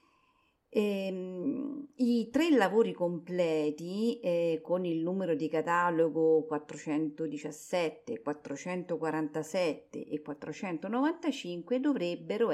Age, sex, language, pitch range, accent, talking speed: 50-69, female, Italian, 160-250 Hz, native, 75 wpm